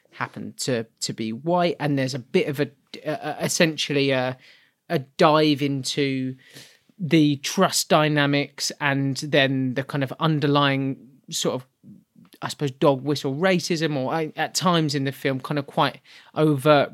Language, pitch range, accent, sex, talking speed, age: English, 130-155 Hz, British, male, 155 wpm, 30-49